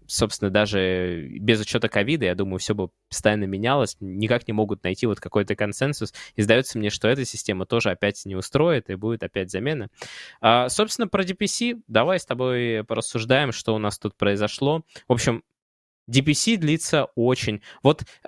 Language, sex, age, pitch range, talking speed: Russian, male, 20-39, 105-135 Hz, 165 wpm